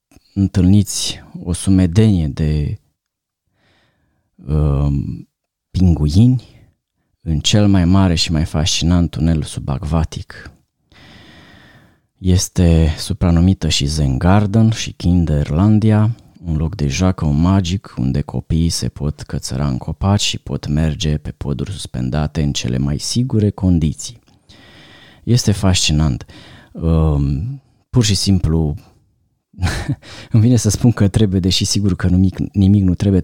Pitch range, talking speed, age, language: 80-100 Hz, 110 wpm, 30-49, Romanian